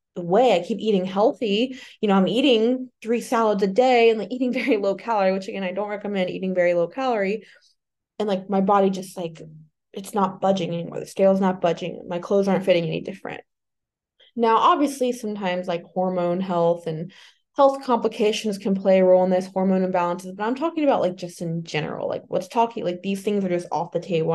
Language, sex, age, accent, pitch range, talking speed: English, female, 20-39, American, 175-215 Hz, 210 wpm